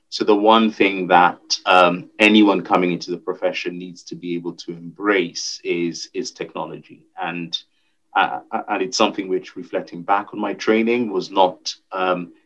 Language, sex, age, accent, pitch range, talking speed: English, male, 30-49, British, 85-105 Hz, 160 wpm